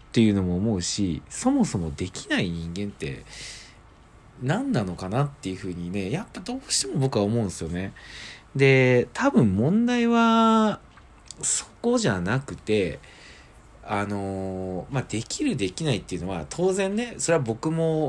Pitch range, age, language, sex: 95-150 Hz, 40-59, Japanese, male